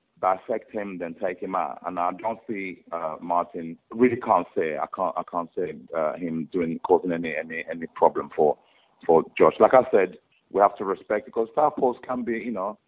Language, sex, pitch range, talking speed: English, male, 85-110 Hz, 215 wpm